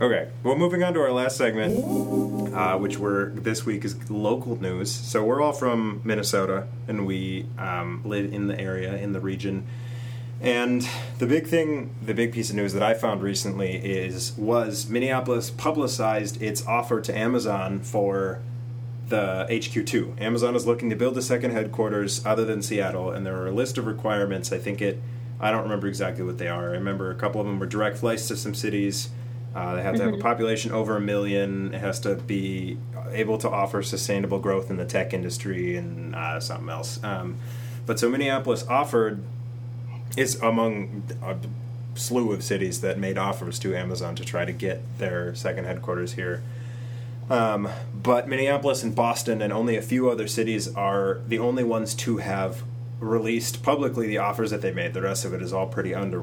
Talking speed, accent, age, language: 190 wpm, American, 30-49, English